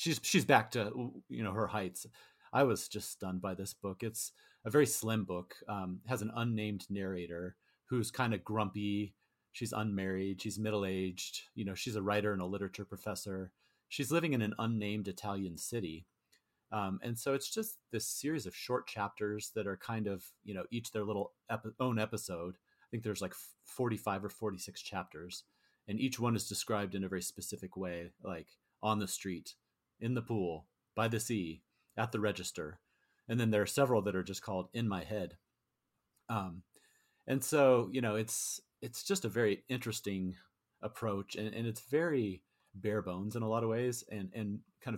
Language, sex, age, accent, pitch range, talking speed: English, male, 30-49, American, 95-115 Hz, 190 wpm